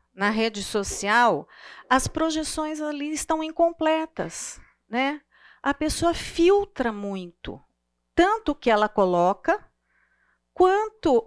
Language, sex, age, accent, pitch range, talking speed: Portuguese, female, 40-59, Brazilian, 210-320 Hz, 100 wpm